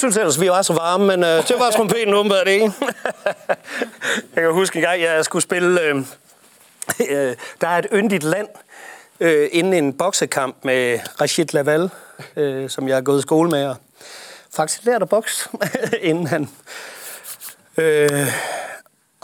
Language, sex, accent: Danish, male, native